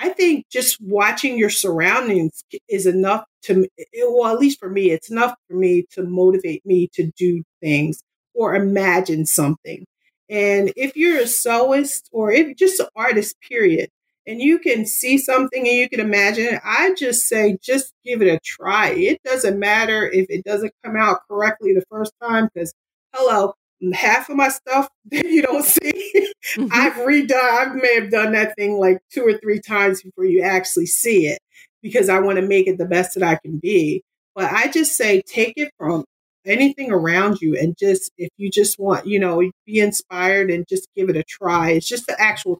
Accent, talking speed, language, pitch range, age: American, 195 wpm, English, 185-250 Hz, 40-59